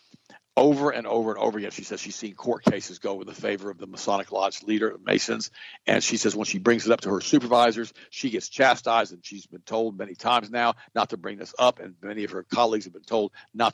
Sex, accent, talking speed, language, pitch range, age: male, American, 255 wpm, English, 105-125 Hz, 50-69